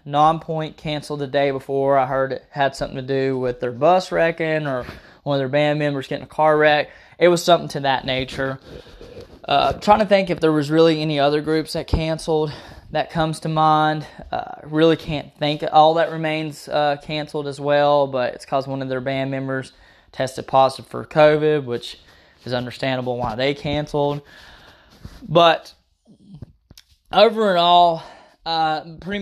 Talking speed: 175 wpm